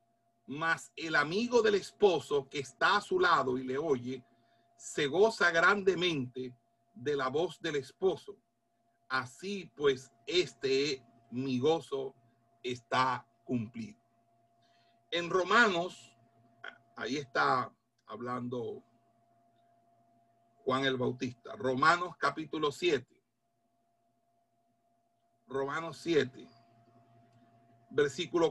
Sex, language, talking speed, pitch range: male, Spanish, 90 wpm, 115-175 Hz